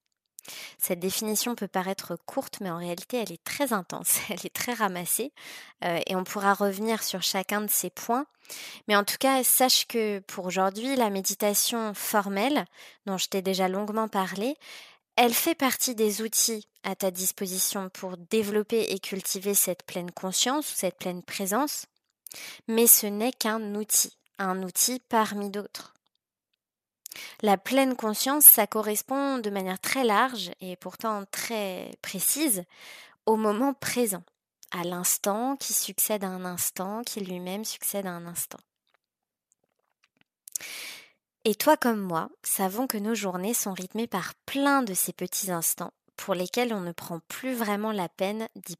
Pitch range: 185-230 Hz